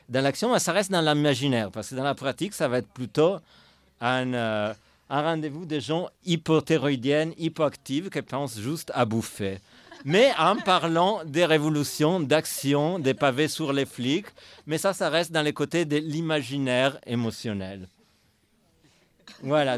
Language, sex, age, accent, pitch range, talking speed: French, male, 50-69, French, 120-165 Hz, 150 wpm